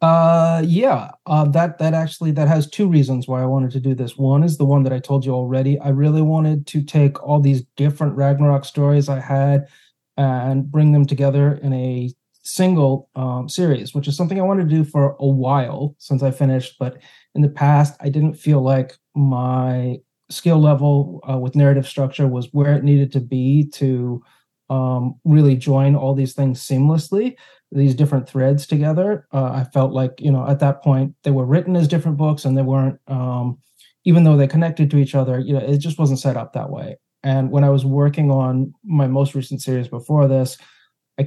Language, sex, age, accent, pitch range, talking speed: English, male, 30-49, American, 130-150 Hz, 205 wpm